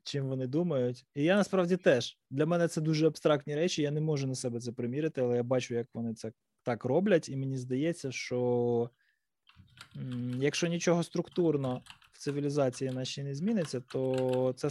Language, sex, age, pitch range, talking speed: Ukrainian, male, 20-39, 130-175 Hz, 180 wpm